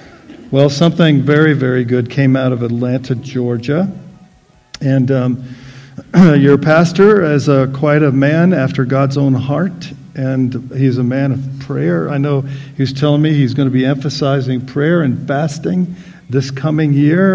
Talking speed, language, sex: 150 wpm, English, male